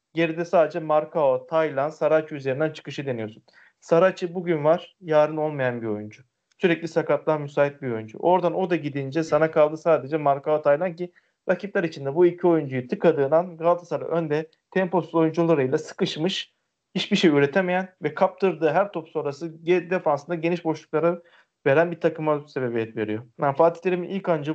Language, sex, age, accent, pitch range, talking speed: Turkish, male, 40-59, native, 150-180 Hz, 150 wpm